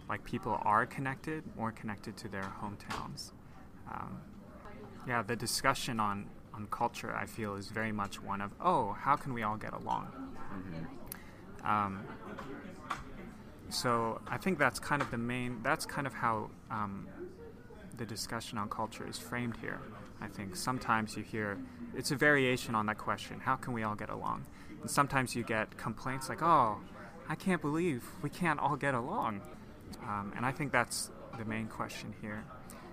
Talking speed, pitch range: 170 wpm, 105-130 Hz